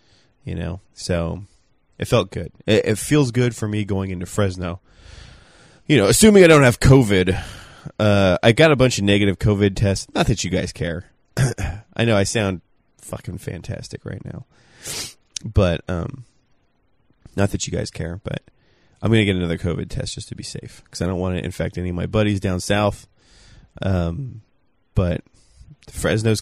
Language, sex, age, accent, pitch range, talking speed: English, male, 20-39, American, 95-125 Hz, 175 wpm